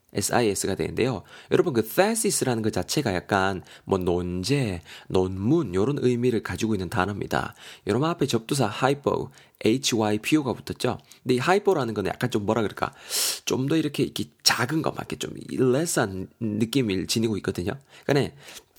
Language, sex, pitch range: Korean, male, 100-140 Hz